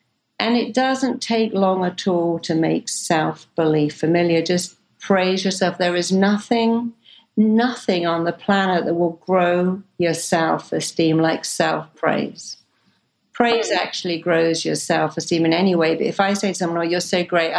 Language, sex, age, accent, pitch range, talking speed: English, female, 50-69, British, 170-215 Hz, 160 wpm